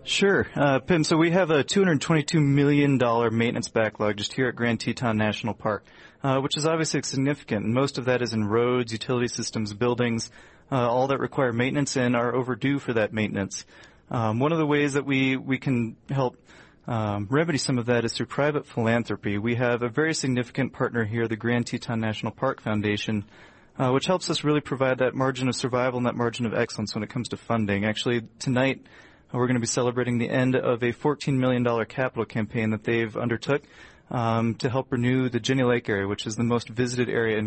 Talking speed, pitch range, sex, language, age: 205 wpm, 115-130 Hz, male, English, 30-49